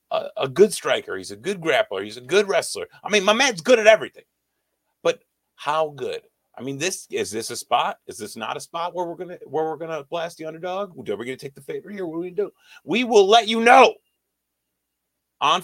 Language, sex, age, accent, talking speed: English, male, 30-49, American, 230 wpm